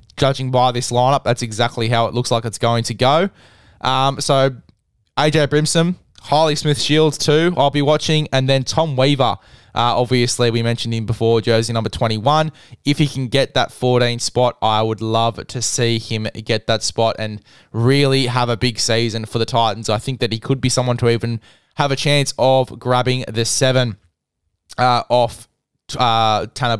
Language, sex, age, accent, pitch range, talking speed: English, male, 20-39, Australian, 115-135 Hz, 185 wpm